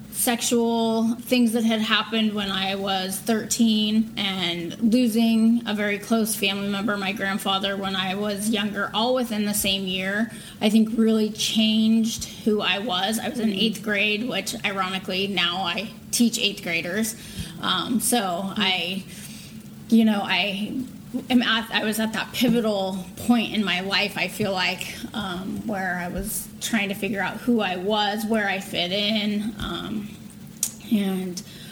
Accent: American